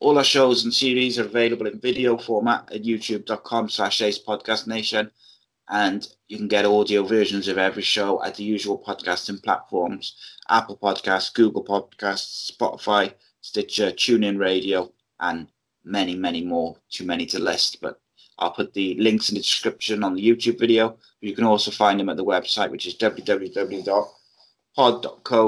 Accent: British